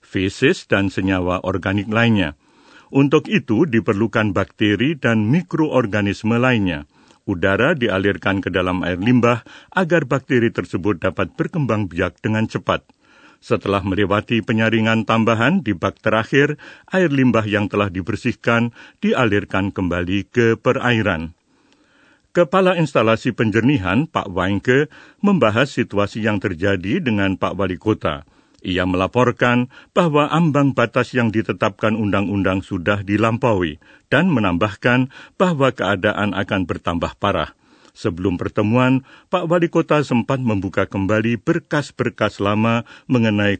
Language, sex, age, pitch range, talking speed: Indonesian, male, 50-69, 100-130 Hz, 110 wpm